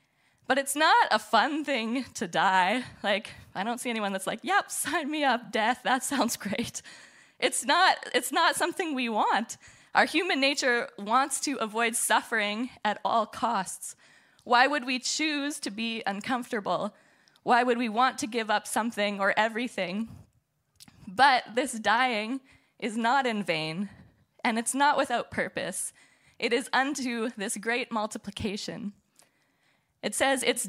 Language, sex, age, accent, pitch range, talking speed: English, female, 10-29, American, 210-265 Hz, 155 wpm